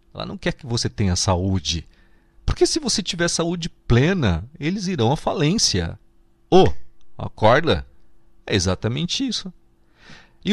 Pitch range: 90-120 Hz